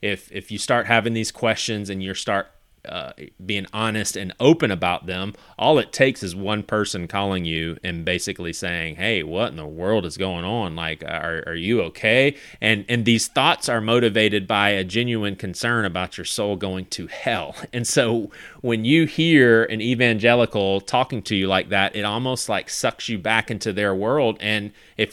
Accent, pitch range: American, 100-120 Hz